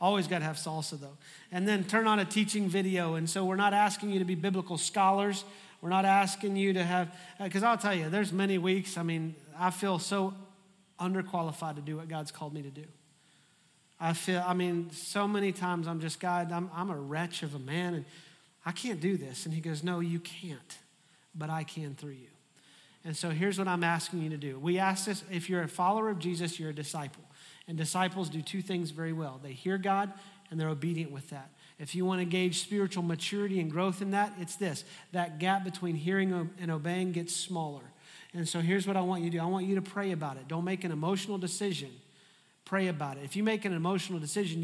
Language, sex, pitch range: English, male, 160-190 Hz